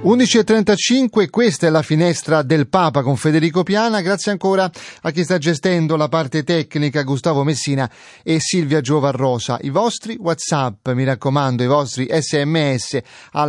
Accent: native